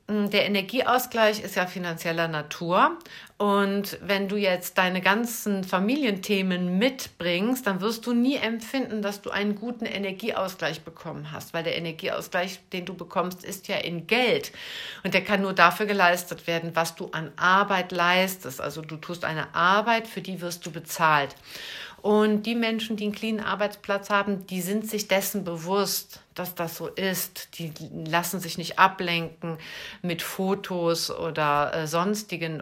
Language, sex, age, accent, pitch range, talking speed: German, female, 50-69, German, 170-210 Hz, 155 wpm